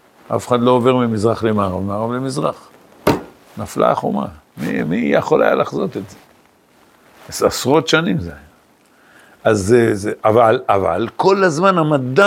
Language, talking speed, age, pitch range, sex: Hebrew, 135 wpm, 60-79, 100-165 Hz, male